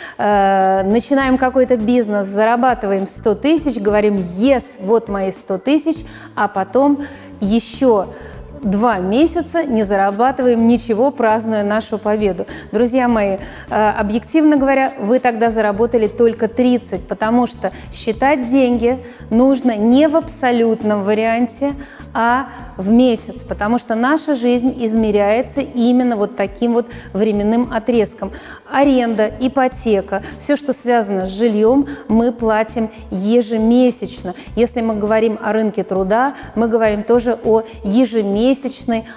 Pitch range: 215-255 Hz